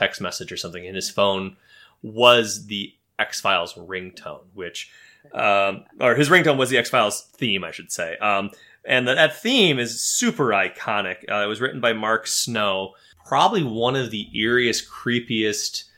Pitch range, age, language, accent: 100-125 Hz, 30-49, English, American